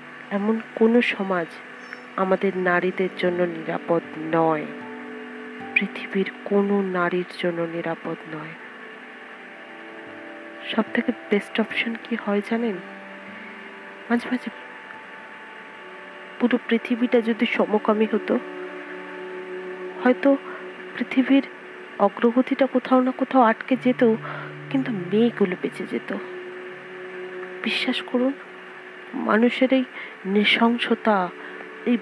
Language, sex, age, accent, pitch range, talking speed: Bengali, female, 30-49, native, 185-245 Hz, 85 wpm